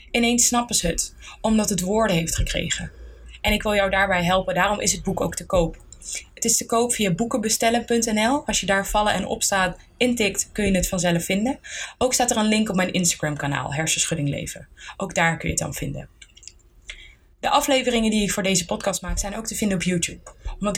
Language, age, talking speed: Dutch, 20-39, 210 wpm